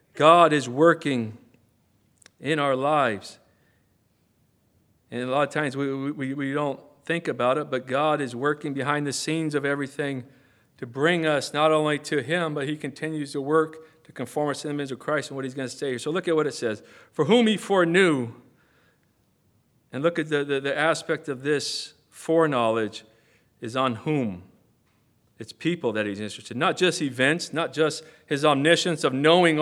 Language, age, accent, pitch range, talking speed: English, 50-69, American, 115-150 Hz, 185 wpm